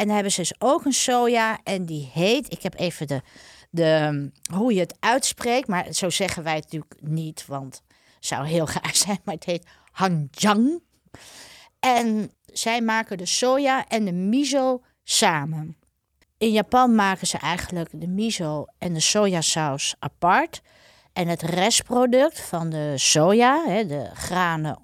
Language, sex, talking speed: Dutch, female, 155 wpm